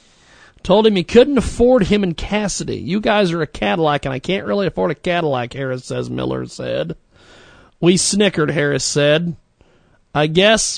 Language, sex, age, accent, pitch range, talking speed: English, male, 40-59, American, 135-185 Hz, 165 wpm